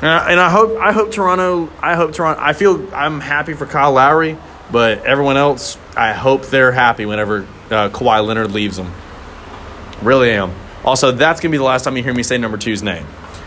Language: English